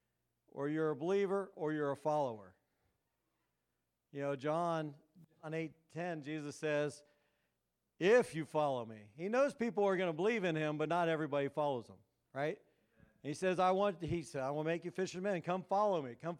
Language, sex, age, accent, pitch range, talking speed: English, male, 50-69, American, 135-165 Hz, 170 wpm